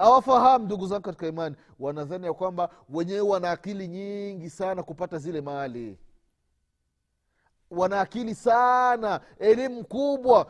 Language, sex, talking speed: Swahili, male, 115 wpm